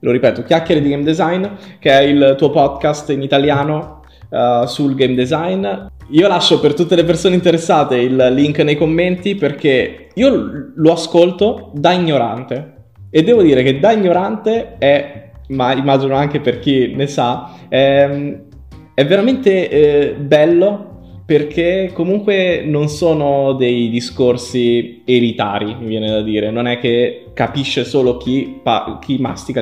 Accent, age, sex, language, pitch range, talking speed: native, 20-39, male, Italian, 115-155 Hz, 145 wpm